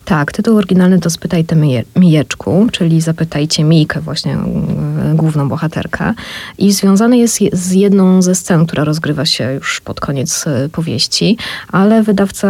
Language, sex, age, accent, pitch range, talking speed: Polish, female, 20-39, native, 155-190 Hz, 145 wpm